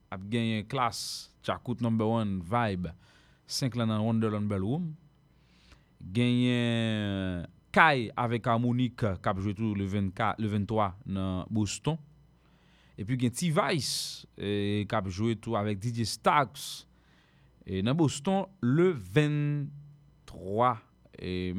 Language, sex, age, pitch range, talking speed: English, male, 30-49, 100-130 Hz, 115 wpm